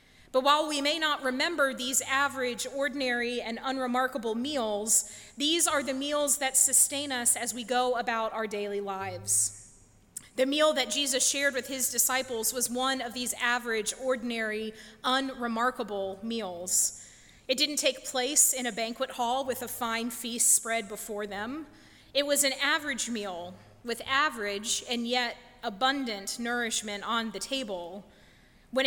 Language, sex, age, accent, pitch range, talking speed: English, female, 30-49, American, 225-275 Hz, 150 wpm